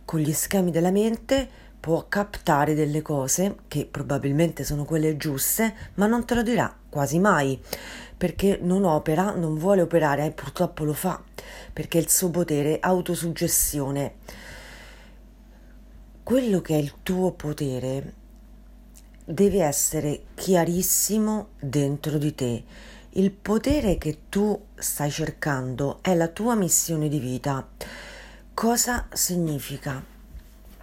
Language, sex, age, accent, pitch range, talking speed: Italian, female, 40-59, native, 150-195 Hz, 125 wpm